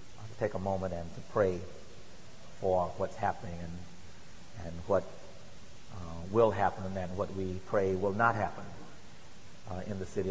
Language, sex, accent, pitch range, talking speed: English, male, American, 90-105 Hz, 150 wpm